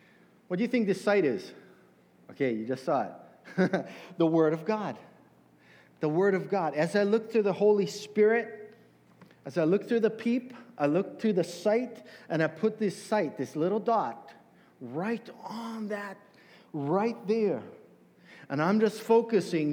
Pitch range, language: 160-220 Hz, English